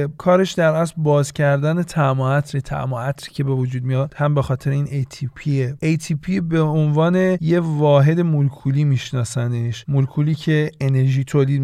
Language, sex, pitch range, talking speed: Persian, male, 130-155 Hz, 150 wpm